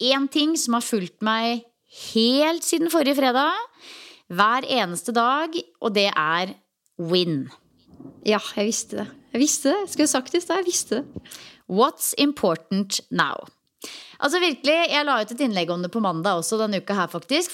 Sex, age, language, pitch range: female, 30-49, English, 200-285 Hz